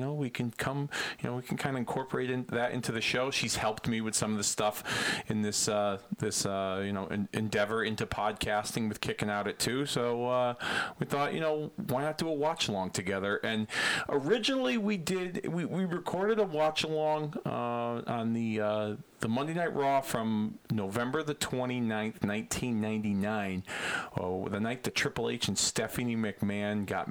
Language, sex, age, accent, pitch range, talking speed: English, male, 40-59, American, 110-145 Hz, 190 wpm